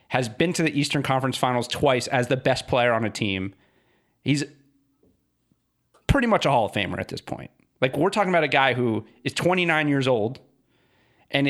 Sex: male